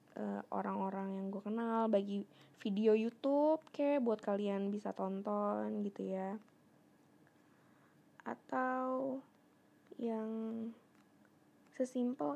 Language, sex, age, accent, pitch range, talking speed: Indonesian, female, 20-39, native, 205-250 Hz, 85 wpm